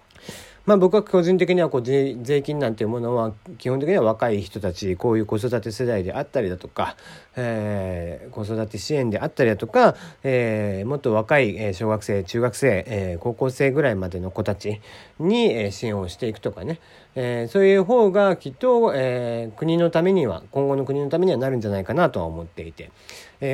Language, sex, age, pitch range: Japanese, male, 40-59, 105-155 Hz